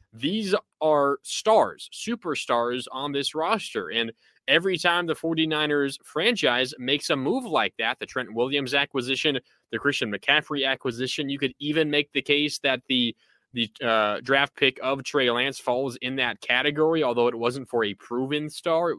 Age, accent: 20-39, American